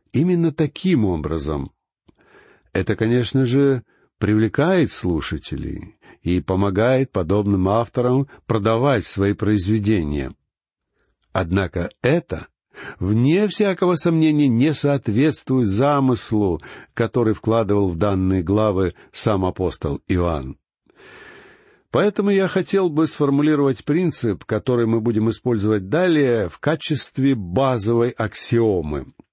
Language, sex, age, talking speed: Russian, male, 60-79, 95 wpm